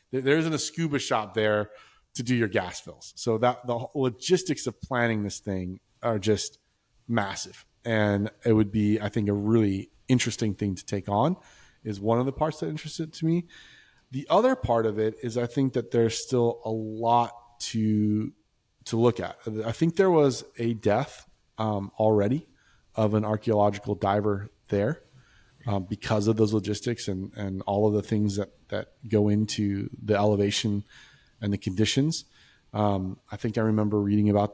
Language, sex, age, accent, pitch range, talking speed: English, male, 30-49, American, 105-120 Hz, 175 wpm